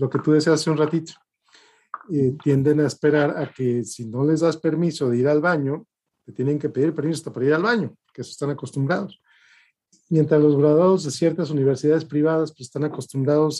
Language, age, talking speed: Spanish, 50-69, 205 wpm